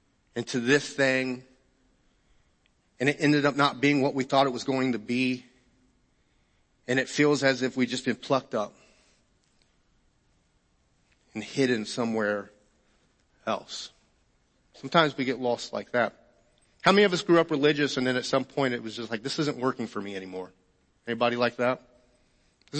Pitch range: 125-155 Hz